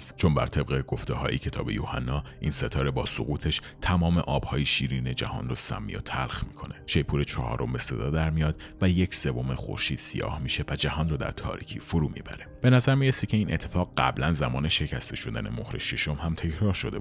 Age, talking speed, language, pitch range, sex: 30-49, 185 wpm, Persian, 70-90 Hz, male